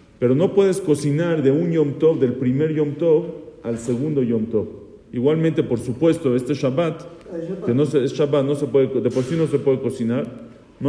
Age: 40-59